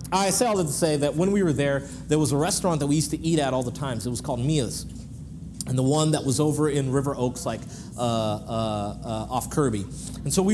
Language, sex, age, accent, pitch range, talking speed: English, male, 30-49, American, 130-165 Hz, 260 wpm